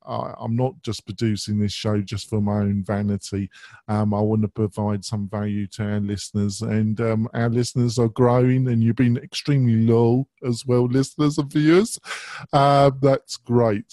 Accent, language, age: British, English, 40-59